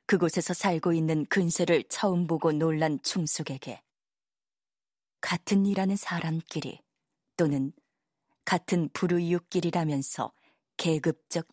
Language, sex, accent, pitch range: Korean, female, native, 150-180 Hz